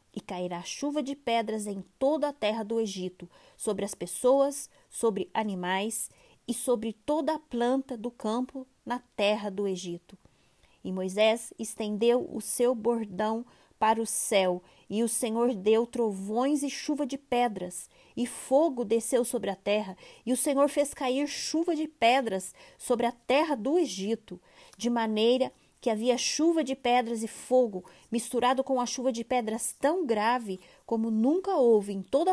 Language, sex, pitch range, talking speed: Portuguese, female, 215-265 Hz, 160 wpm